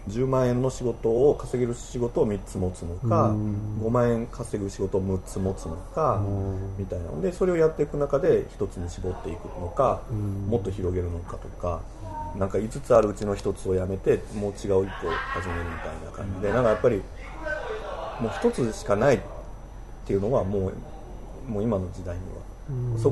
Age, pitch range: 40-59, 95-120 Hz